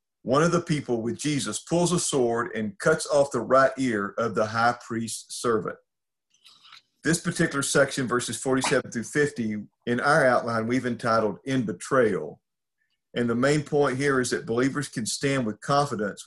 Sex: male